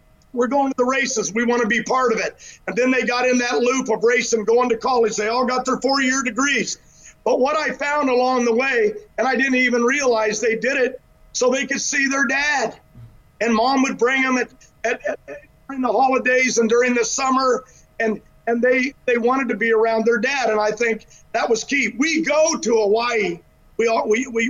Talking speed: 225 wpm